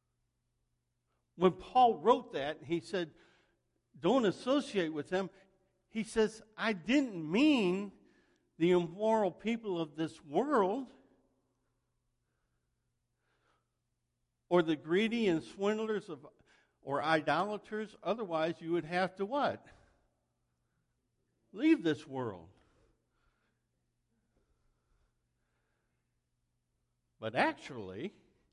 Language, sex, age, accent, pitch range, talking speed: English, male, 60-79, American, 130-185 Hz, 85 wpm